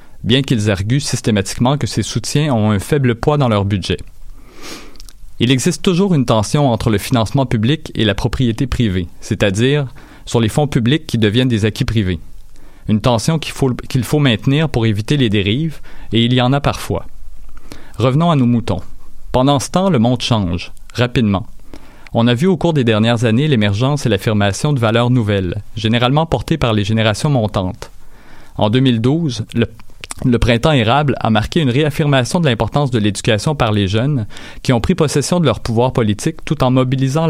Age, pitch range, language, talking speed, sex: 40-59, 110-140 Hz, French, 180 wpm, male